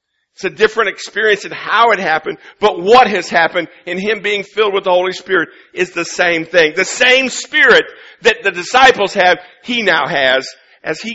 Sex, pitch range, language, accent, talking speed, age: male, 190-250 Hz, English, American, 195 wpm, 50-69